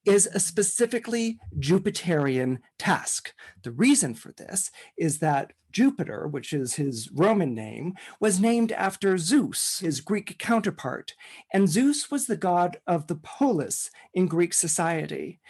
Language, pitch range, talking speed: English, 150-205 Hz, 135 wpm